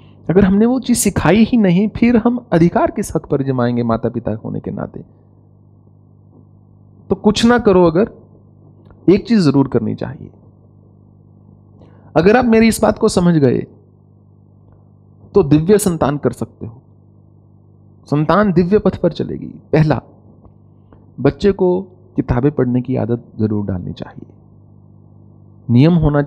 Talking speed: 135 wpm